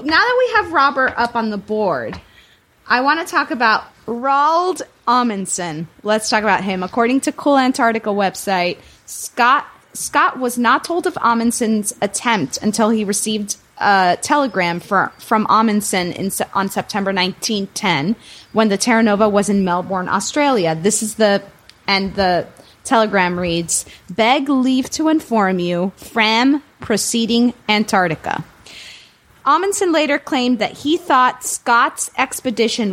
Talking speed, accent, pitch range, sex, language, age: 140 wpm, American, 195-265 Hz, female, English, 20-39